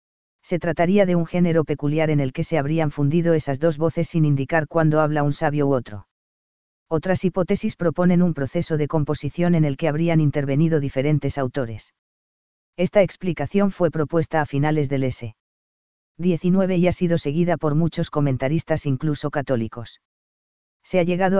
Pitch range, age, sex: 145-170 Hz, 40-59, female